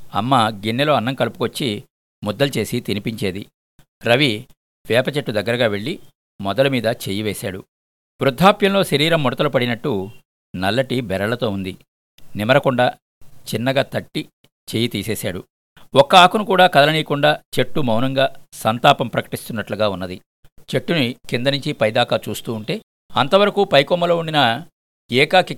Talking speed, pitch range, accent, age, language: 105 wpm, 105-145 Hz, native, 50-69, Telugu